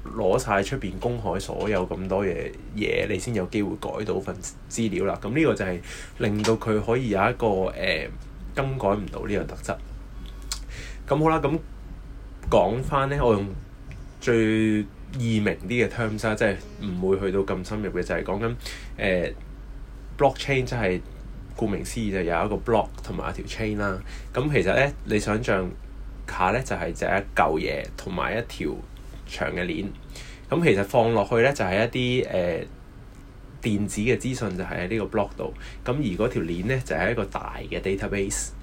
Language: Chinese